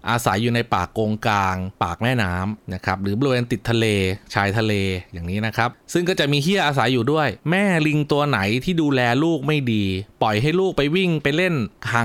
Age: 20-39